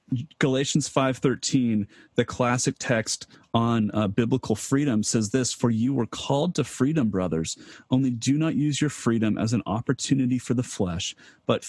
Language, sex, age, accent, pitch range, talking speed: English, male, 30-49, American, 110-140 Hz, 160 wpm